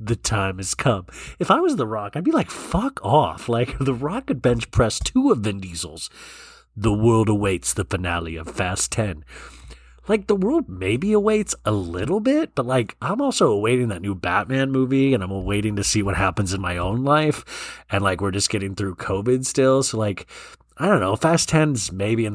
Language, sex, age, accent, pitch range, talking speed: English, male, 30-49, American, 95-150 Hz, 205 wpm